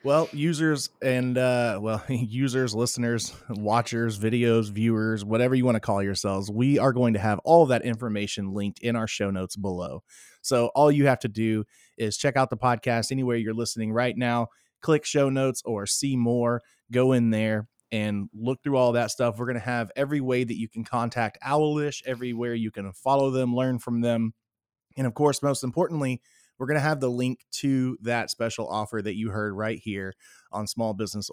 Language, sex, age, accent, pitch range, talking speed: English, male, 20-39, American, 110-130 Hz, 200 wpm